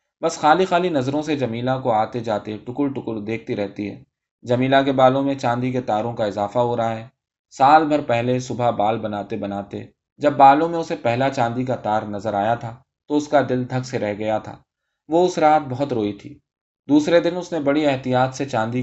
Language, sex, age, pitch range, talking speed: Urdu, male, 20-39, 110-140 Hz, 215 wpm